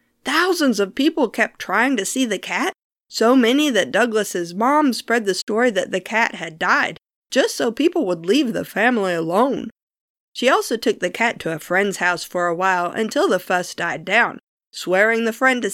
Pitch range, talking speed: 185-270 Hz, 195 wpm